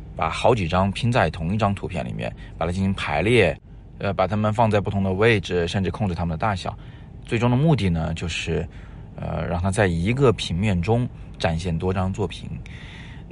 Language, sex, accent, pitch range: Chinese, male, native, 85-105 Hz